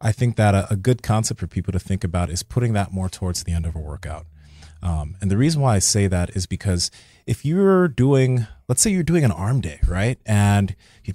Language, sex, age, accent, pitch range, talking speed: English, male, 30-49, American, 95-125 Hz, 235 wpm